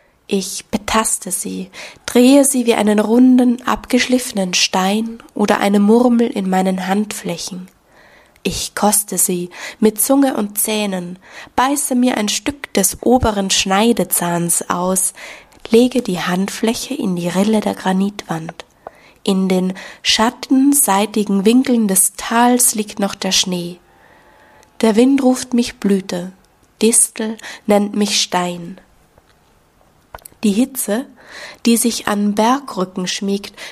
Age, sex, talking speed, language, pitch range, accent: 20-39, female, 115 wpm, German, 190-230 Hz, German